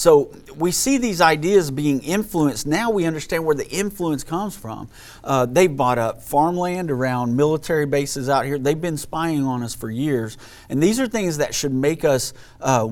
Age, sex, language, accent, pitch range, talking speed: 40-59, male, English, American, 125-170 Hz, 190 wpm